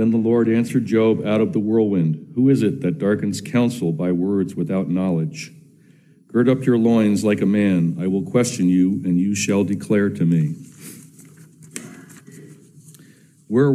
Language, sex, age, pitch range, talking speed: English, male, 60-79, 105-135 Hz, 160 wpm